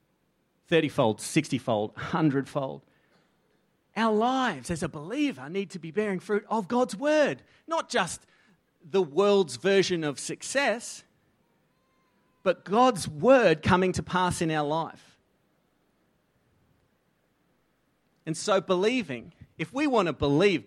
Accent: Australian